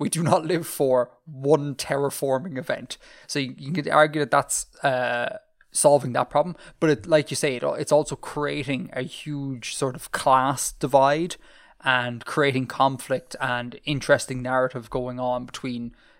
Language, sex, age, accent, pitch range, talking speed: English, male, 20-39, Irish, 125-145 Hz, 160 wpm